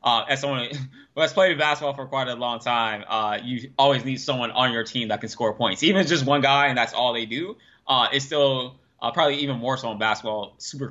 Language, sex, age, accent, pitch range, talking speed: English, male, 20-39, American, 110-135 Hz, 255 wpm